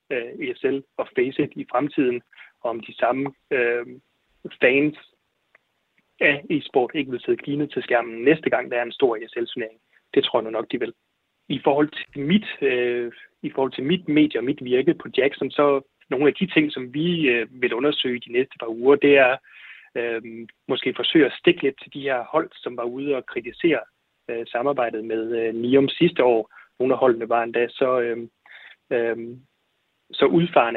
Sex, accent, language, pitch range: male, native, Danish, 120-150 Hz